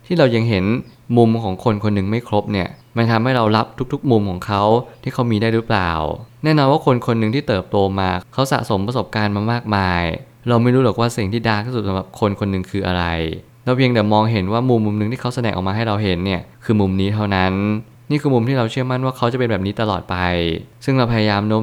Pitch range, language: 100-120 Hz, Thai